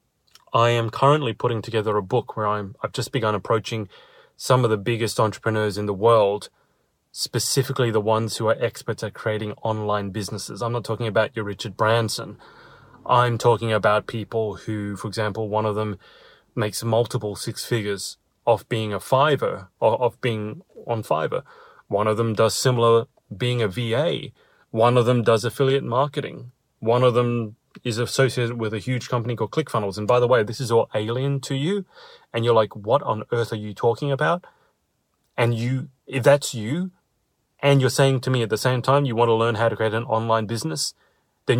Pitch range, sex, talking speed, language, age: 105-125 Hz, male, 190 wpm, English, 30-49